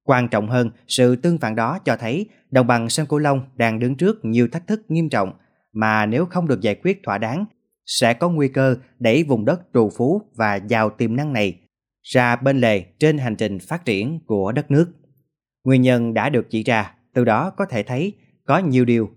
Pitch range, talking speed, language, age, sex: 110-150 Hz, 215 wpm, Vietnamese, 20-39, male